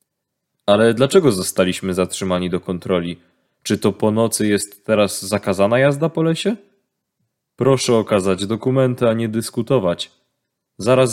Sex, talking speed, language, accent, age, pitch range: male, 125 wpm, Polish, native, 20-39, 95-125 Hz